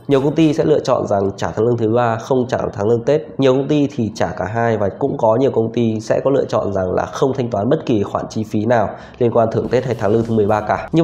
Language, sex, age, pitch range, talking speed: Vietnamese, male, 20-39, 105-135 Hz, 305 wpm